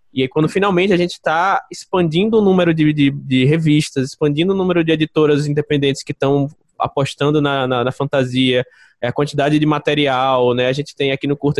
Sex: male